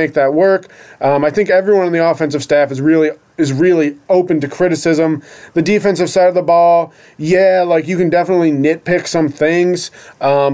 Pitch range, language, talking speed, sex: 145-170 Hz, English, 190 wpm, male